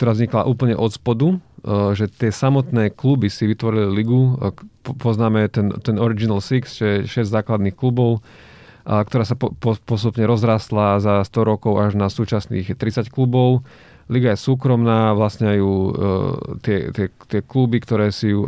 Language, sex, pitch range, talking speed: Slovak, male, 100-115 Hz, 150 wpm